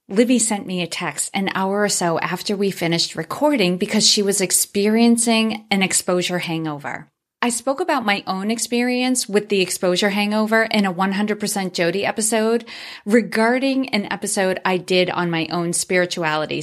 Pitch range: 175-215 Hz